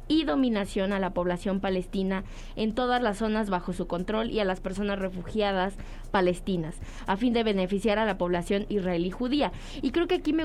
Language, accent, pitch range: English, Mexican, 185-235 Hz